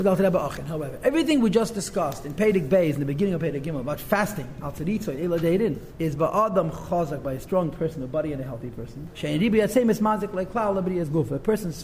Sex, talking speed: male, 155 wpm